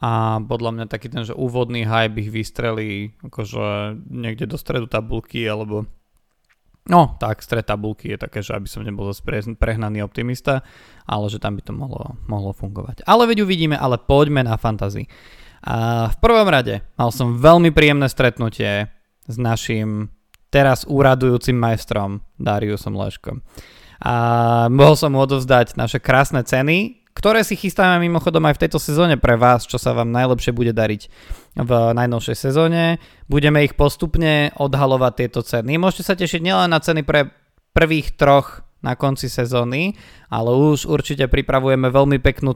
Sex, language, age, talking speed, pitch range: male, Slovak, 20-39, 155 wpm, 110-145 Hz